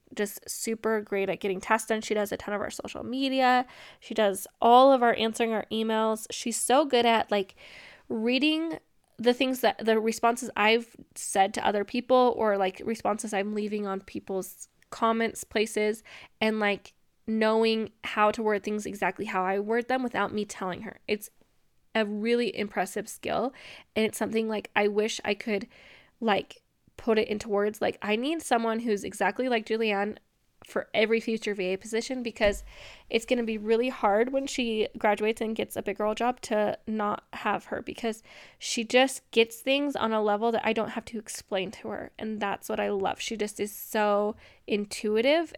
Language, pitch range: English, 205-235 Hz